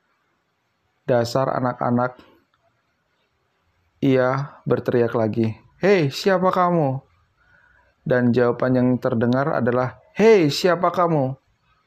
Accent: native